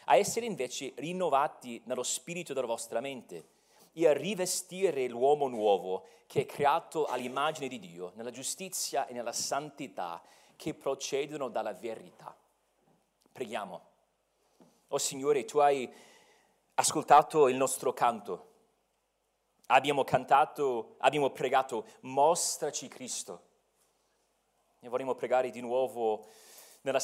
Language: Italian